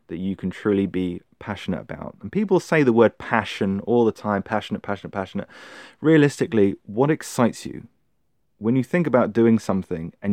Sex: male